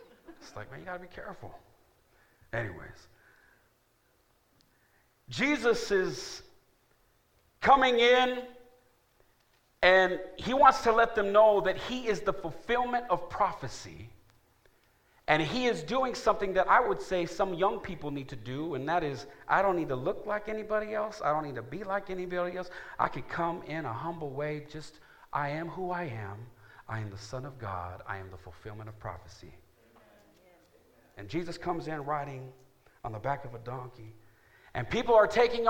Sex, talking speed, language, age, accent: male, 170 wpm, English, 50-69, American